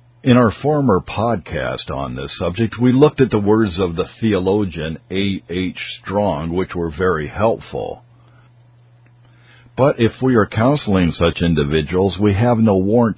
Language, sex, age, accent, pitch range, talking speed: English, male, 50-69, American, 90-120 Hz, 150 wpm